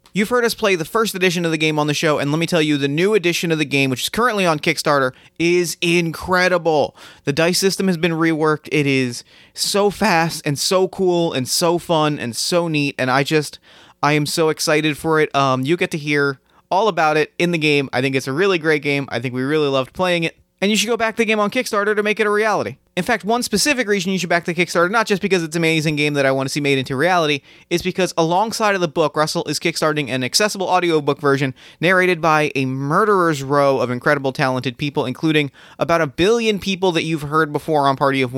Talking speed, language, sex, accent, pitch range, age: 245 wpm, English, male, American, 140-180 Hz, 30-49